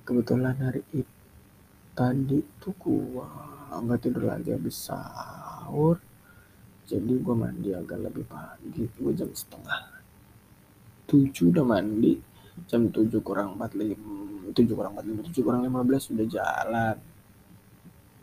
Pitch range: 105-155 Hz